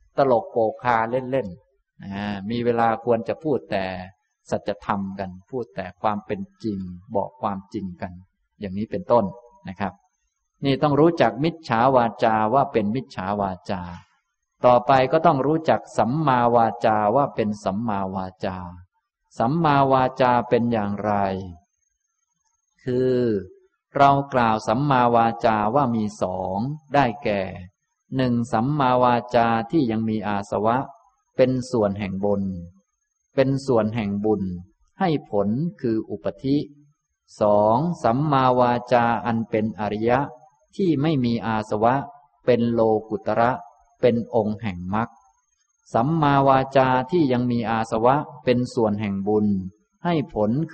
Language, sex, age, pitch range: Thai, male, 20-39, 100-130 Hz